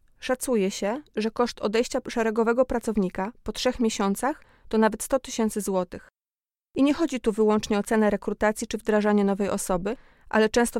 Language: Polish